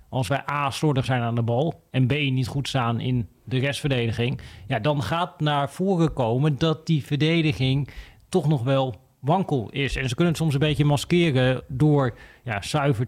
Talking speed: 190 wpm